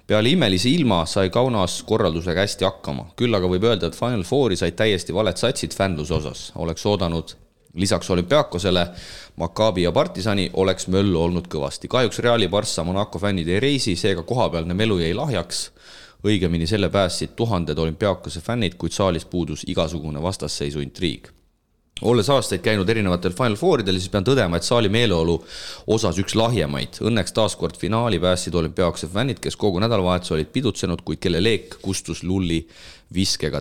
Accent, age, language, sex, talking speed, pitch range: Finnish, 30-49, English, male, 155 wpm, 80-100 Hz